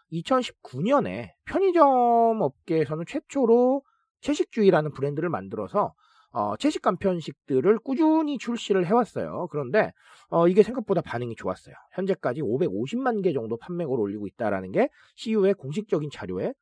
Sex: male